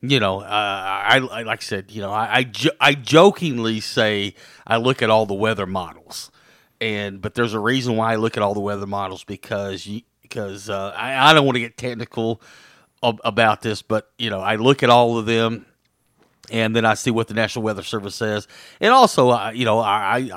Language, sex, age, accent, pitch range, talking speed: English, male, 40-59, American, 100-120 Hz, 230 wpm